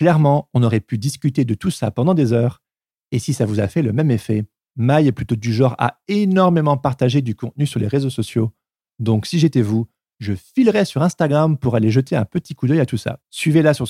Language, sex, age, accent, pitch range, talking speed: French, male, 40-59, French, 115-160 Hz, 235 wpm